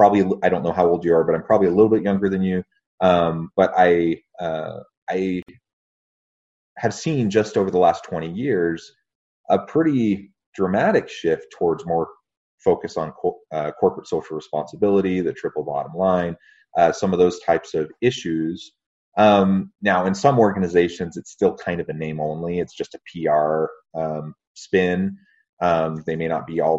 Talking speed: 175 wpm